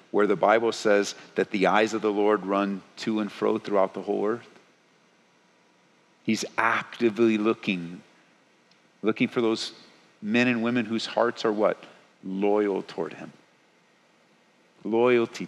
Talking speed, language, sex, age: 135 wpm, English, male, 50-69